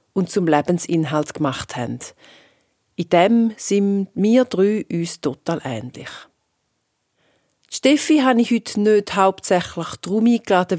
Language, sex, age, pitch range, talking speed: German, female, 40-59, 170-220 Hz, 120 wpm